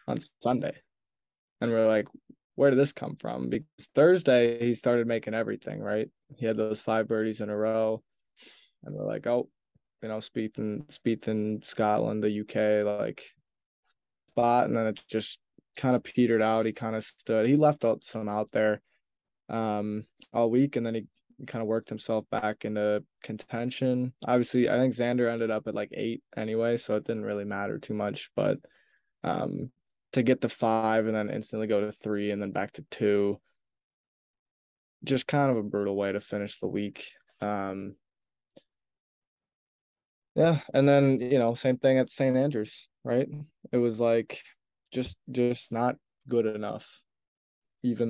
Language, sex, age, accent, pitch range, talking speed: English, male, 20-39, American, 105-125 Hz, 170 wpm